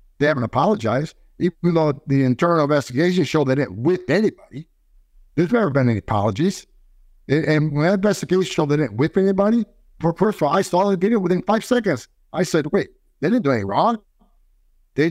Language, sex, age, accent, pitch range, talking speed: English, male, 50-69, American, 135-185 Hz, 185 wpm